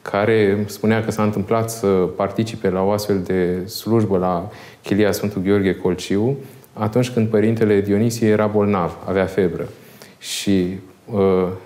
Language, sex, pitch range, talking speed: Romanian, male, 95-105 Hz, 140 wpm